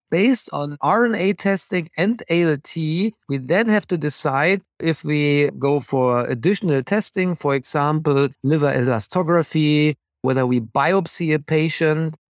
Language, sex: English, male